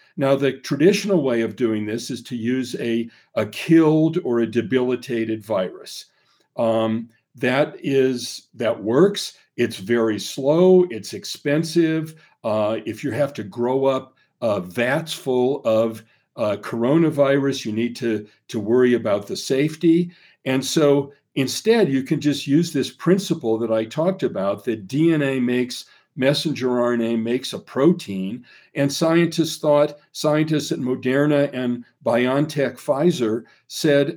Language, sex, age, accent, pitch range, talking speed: English, male, 50-69, American, 120-160 Hz, 135 wpm